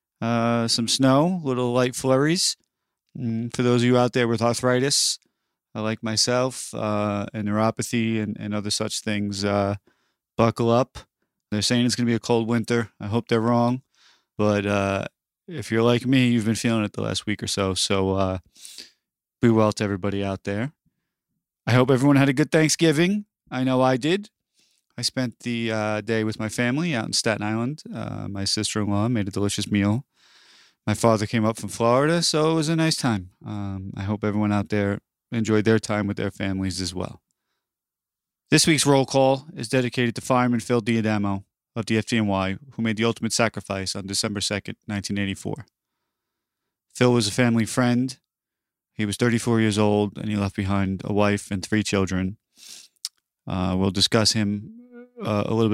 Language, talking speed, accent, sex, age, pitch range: English, 180 wpm, American, male, 30-49, 100-125 Hz